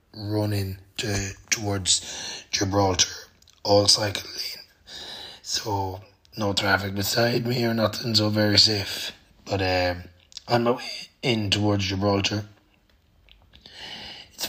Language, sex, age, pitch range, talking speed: English, male, 20-39, 95-105 Hz, 105 wpm